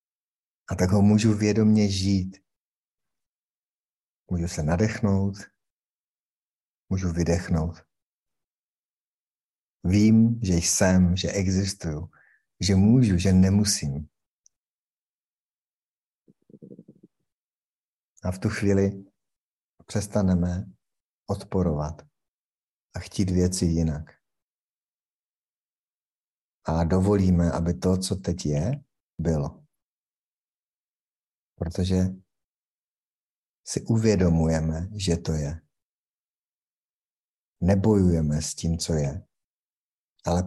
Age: 50-69